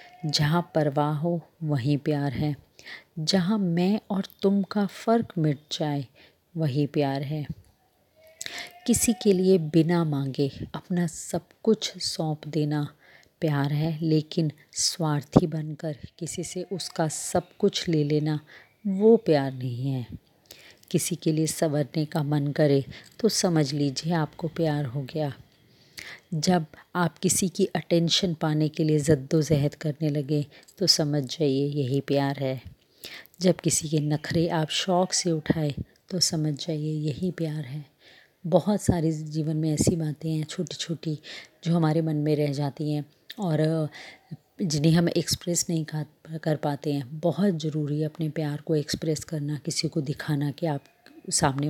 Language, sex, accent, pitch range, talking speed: Hindi, female, native, 150-175 Hz, 145 wpm